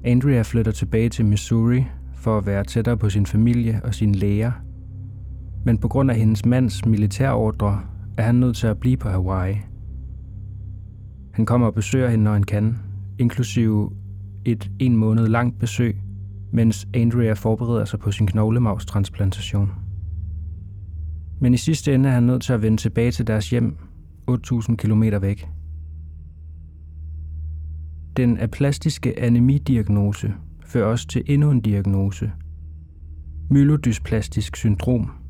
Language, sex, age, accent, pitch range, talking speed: Danish, male, 30-49, native, 95-120 Hz, 135 wpm